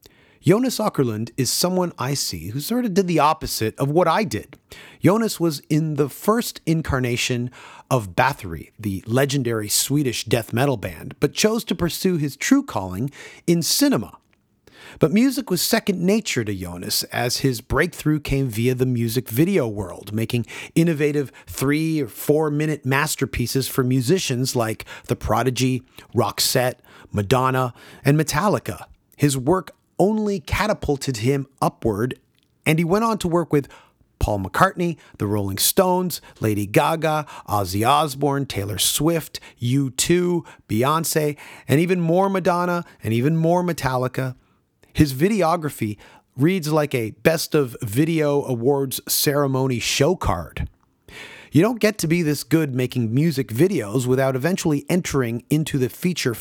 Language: English